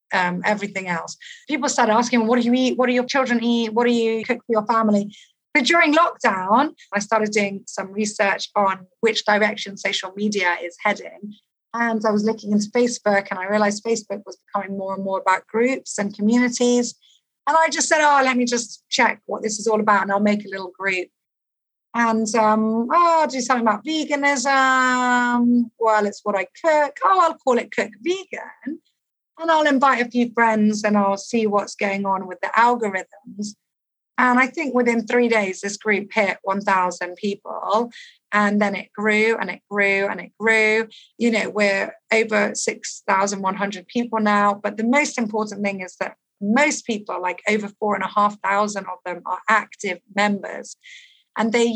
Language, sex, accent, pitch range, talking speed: English, female, British, 200-240 Hz, 180 wpm